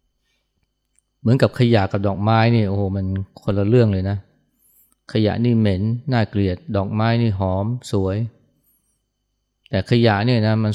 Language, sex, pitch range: Thai, male, 95-115 Hz